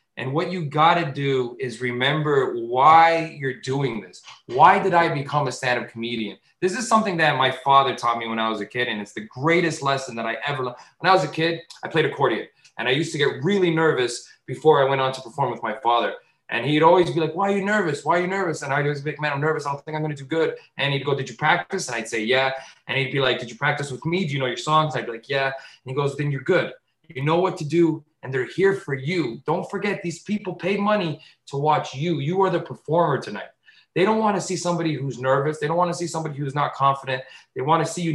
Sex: male